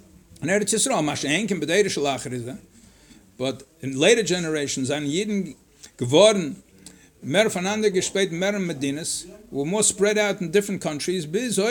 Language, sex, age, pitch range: English, male, 60-79, 180-220 Hz